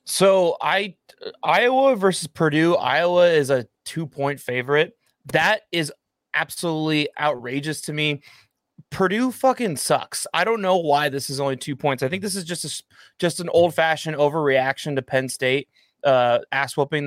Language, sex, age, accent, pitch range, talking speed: English, male, 20-39, American, 130-165 Hz, 155 wpm